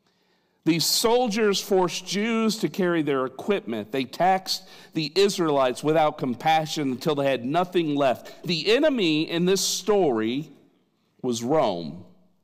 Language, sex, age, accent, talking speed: English, male, 50-69, American, 125 wpm